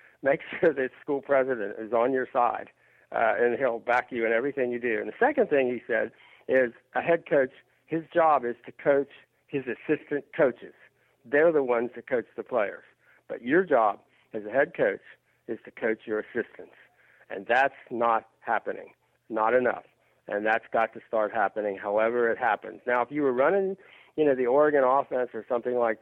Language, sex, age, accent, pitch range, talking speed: English, male, 60-79, American, 115-140 Hz, 190 wpm